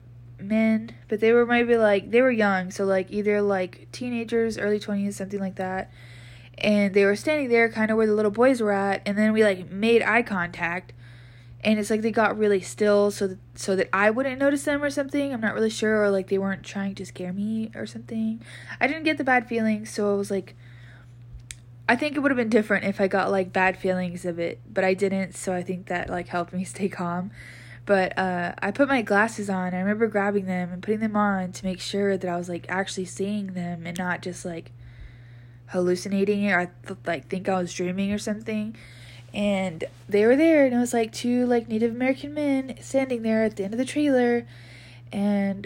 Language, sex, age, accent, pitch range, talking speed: English, female, 20-39, American, 175-215 Hz, 220 wpm